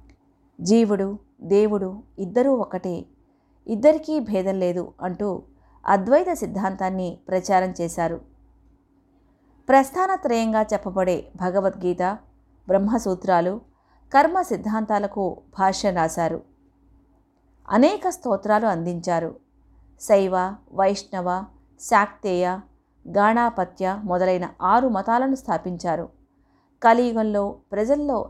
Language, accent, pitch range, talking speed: Telugu, native, 185-235 Hz, 70 wpm